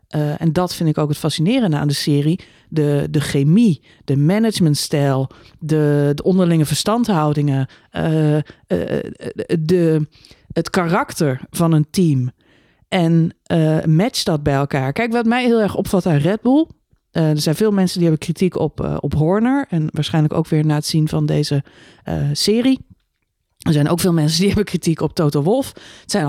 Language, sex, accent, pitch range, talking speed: Dutch, female, Dutch, 155-200 Hz, 180 wpm